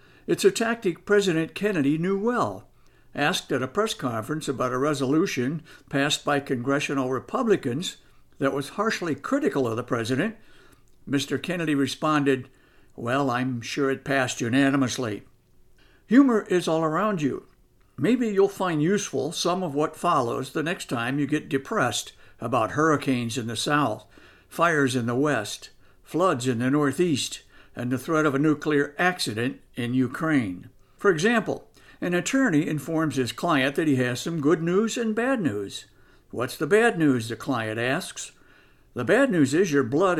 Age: 60-79